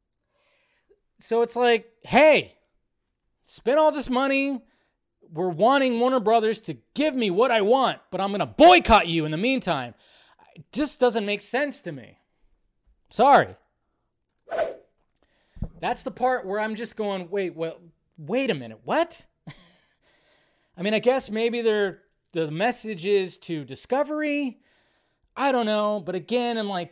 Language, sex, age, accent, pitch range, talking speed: English, male, 20-39, American, 160-230 Hz, 145 wpm